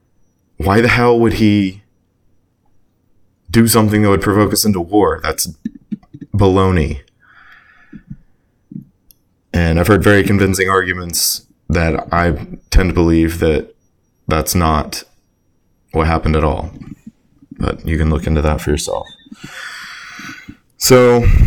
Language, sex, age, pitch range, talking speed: English, male, 20-39, 80-100 Hz, 115 wpm